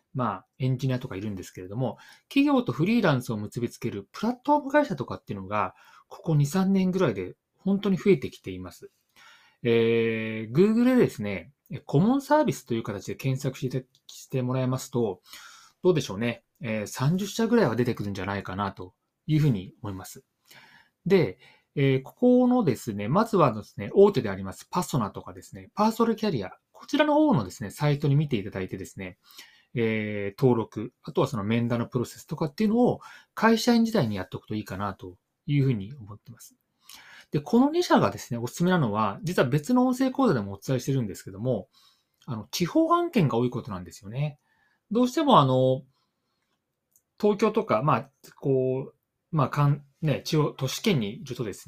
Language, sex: Japanese, male